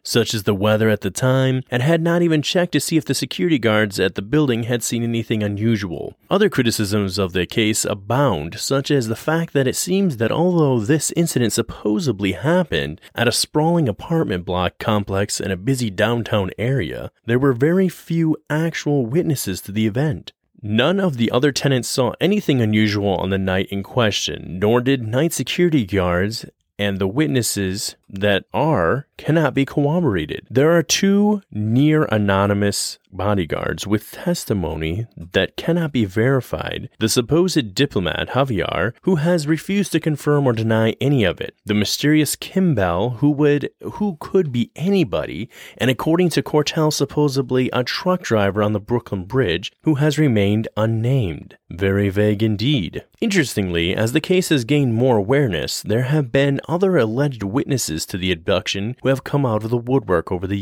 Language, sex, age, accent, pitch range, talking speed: English, male, 30-49, American, 105-150 Hz, 170 wpm